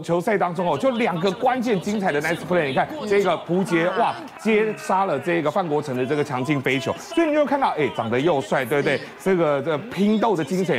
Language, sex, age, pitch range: Chinese, male, 30-49, 145-220 Hz